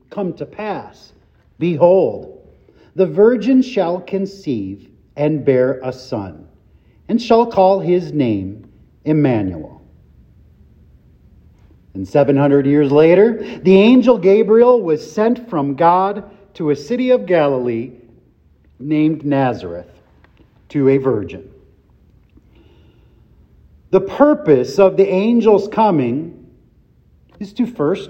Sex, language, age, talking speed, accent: male, English, 40-59, 100 wpm, American